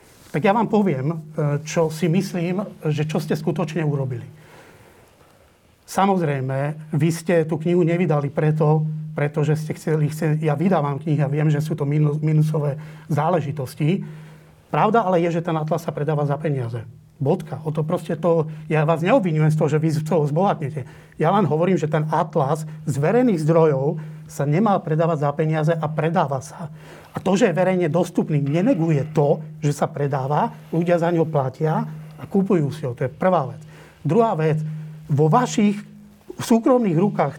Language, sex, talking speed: Slovak, male, 160 wpm